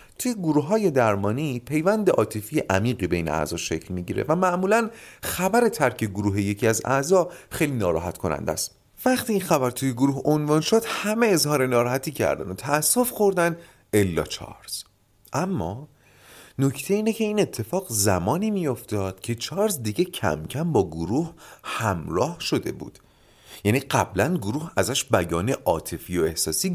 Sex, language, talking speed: male, Persian, 145 wpm